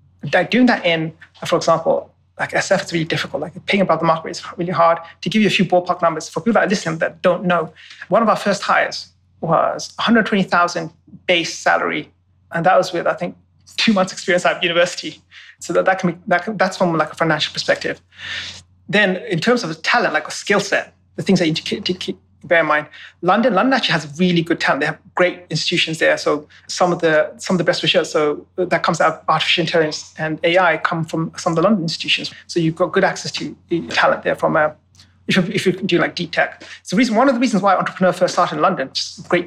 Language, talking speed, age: English, 235 wpm, 30-49